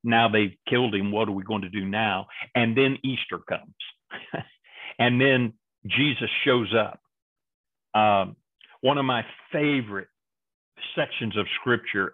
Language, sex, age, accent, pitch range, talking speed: English, male, 50-69, American, 105-130 Hz, 140 wpm